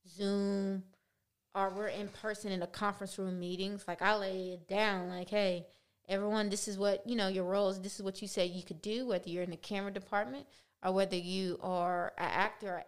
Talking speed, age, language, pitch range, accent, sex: 215 wpm, 20-39, English, 185-215 Hz, American, female